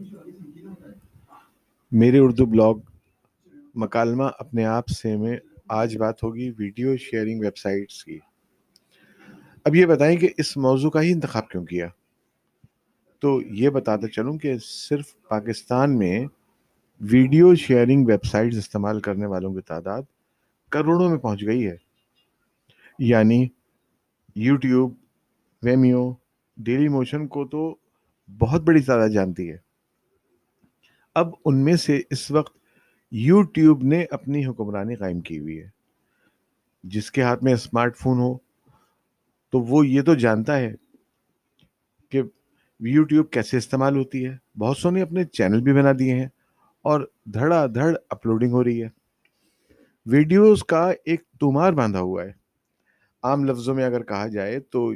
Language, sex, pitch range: Urdu, male, 110-145 Hz